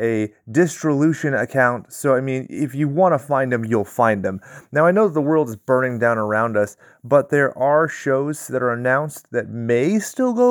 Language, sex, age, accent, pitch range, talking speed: English, male, 30-49, American, 110-150 Hz, 205 wpm